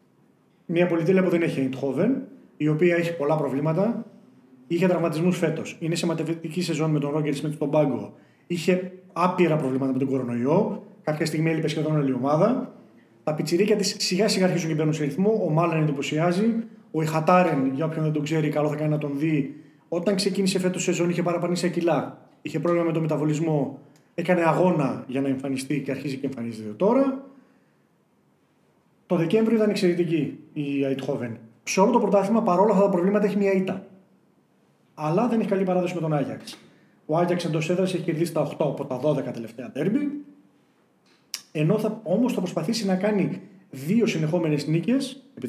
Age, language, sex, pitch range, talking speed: 30-49, Greek, male, 150-195 Hz, 180 wpm